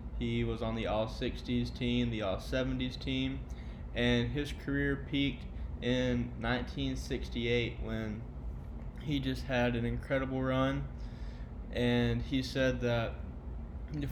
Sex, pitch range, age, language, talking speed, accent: male, 115-135 Hz, 20-39, English, 115 wpm, American